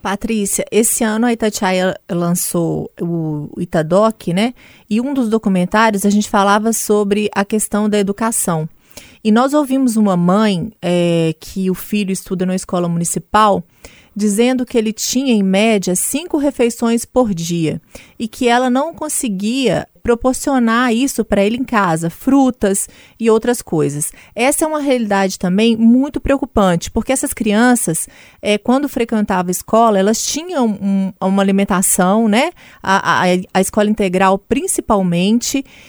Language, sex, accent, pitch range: Portuguese, female, Brazilian, 195-250 Hz